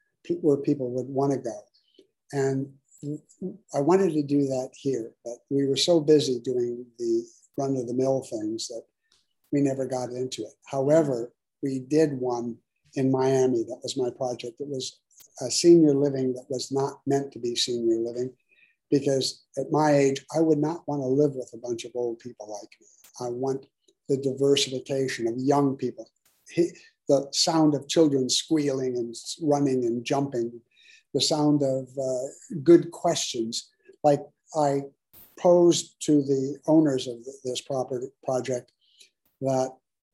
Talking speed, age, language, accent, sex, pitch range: 160 wpm, 60-79, English, American, male, 130-150 Hz